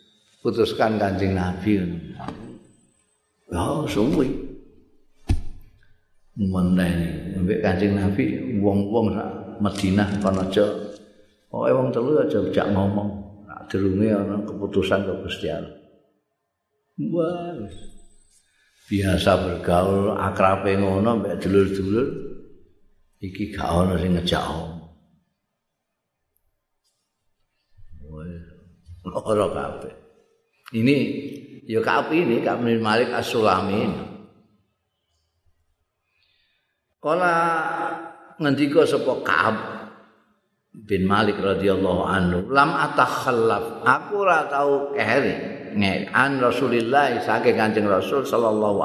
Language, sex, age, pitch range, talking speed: Indonesian, male, 50-69, 95-125 Hz, 85 wpm